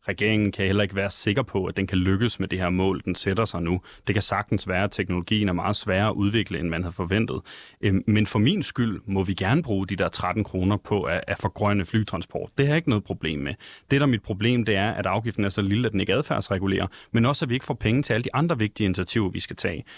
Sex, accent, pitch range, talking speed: male, native, 105-150 Hz, 270 wpm